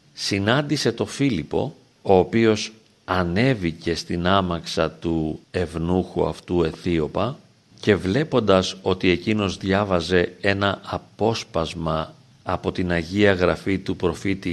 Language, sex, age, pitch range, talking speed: Greek, male, 50-69, 90-110 Hz, 105 wpm